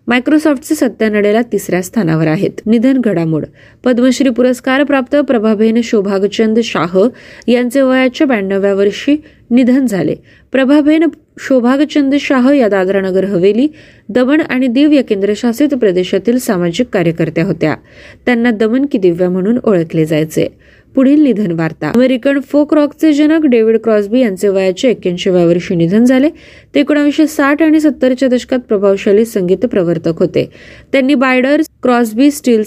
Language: Marathi